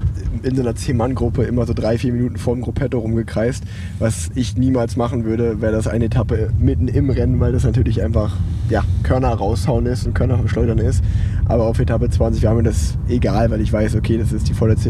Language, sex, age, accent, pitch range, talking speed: German, male, 20-39, German, 110-125 Hz, 215 wpm